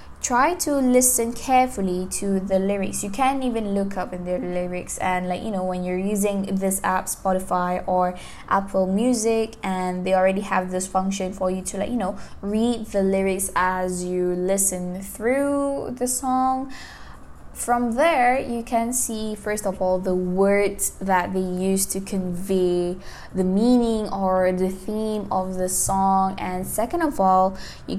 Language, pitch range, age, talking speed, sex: Malay, 185-210 Hz, 10-29, 165 wpm, female